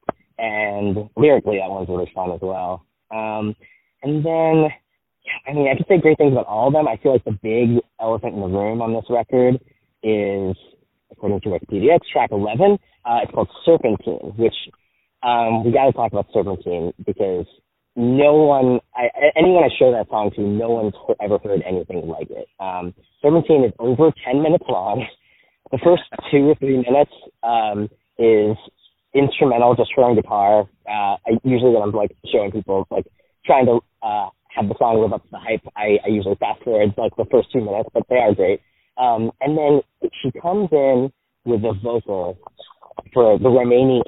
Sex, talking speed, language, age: male, 180 wpm, English, 20-39